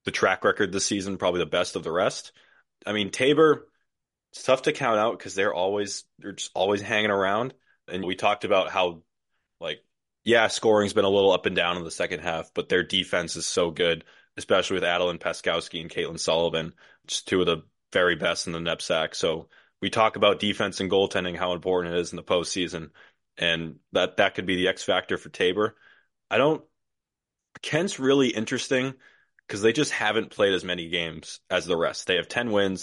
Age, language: 20-39, English